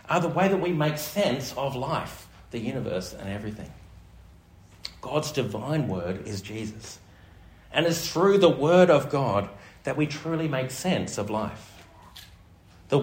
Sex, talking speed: male, 150 wpm